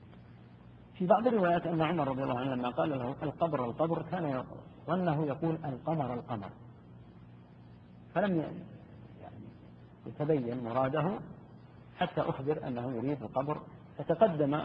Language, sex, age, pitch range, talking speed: Arabic, male, 50-69, 115-165 Hz, 120 wpm